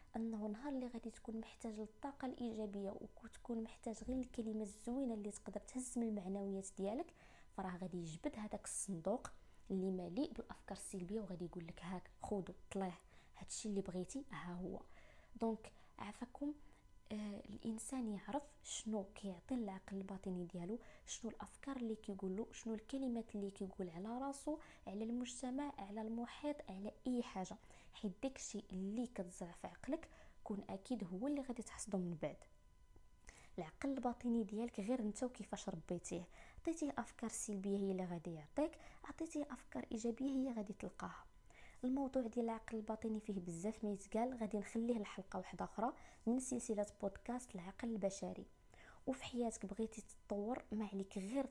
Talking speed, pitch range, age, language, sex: 145 wpm, 195-245 Hz, 20-39, Arabic, female